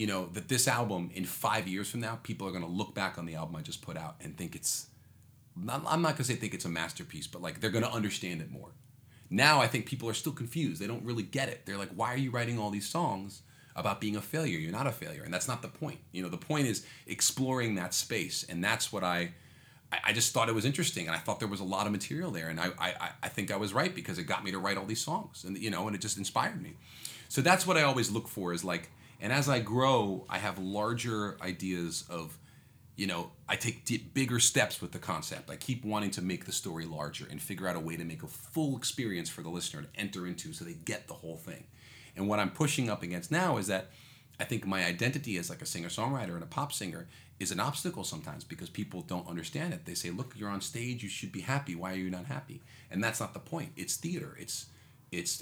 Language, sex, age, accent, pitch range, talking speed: Dutch, male, 30-49, American, 95-130 Hz, 260 wpm